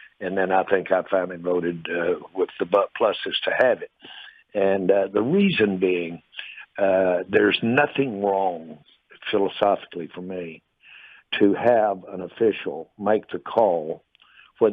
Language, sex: English, male